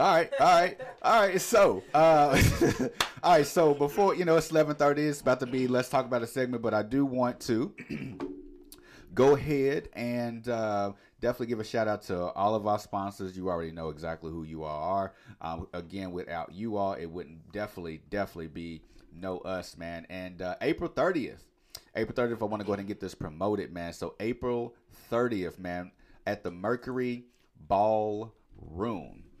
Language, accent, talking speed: English, American, 185 wpm